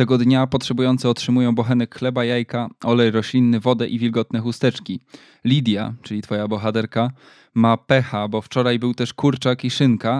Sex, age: male, 20-39